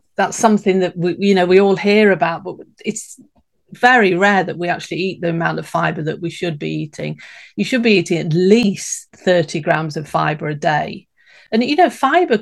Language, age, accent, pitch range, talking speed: English, 40-59, British, 170-210 Hz, 210 wpm